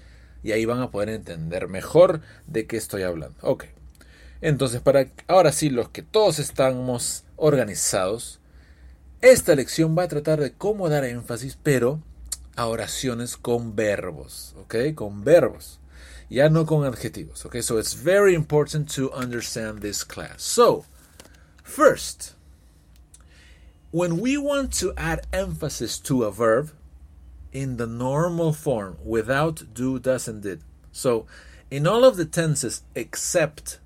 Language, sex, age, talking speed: English, male, 40-59, 135 wpm